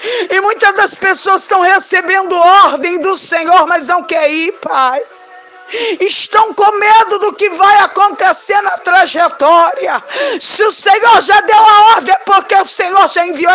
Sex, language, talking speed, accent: female, Portuguese, 160 wpm, Brazilian